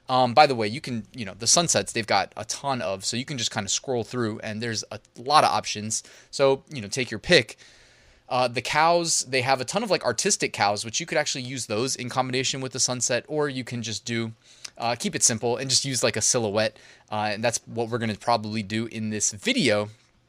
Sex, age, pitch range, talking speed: male, 20-39, 110-135 Hz, 250 wpm